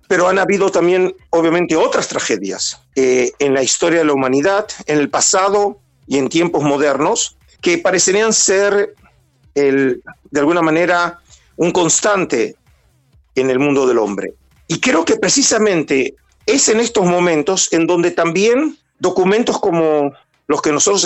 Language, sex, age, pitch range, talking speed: Spanish, male, 50-69, 140-190 Hz, 145 wpm